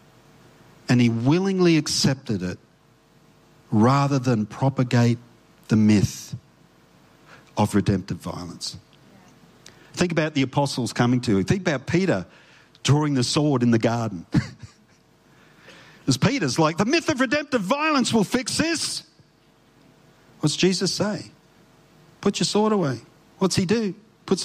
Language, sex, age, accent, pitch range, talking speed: English, male, 50-69, Australian, 125-175 Hz, 125 wpm